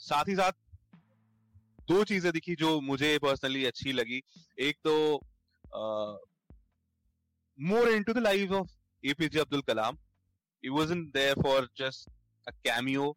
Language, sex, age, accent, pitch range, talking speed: Hindi, male, 30-49, native, 110-145 Hz, 90 wpm